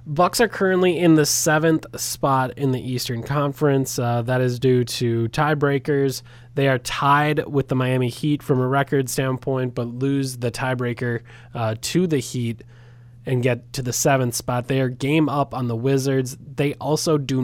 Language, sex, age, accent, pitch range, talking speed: English, male, 20-39, American, 120-145 Hz, 180 wpm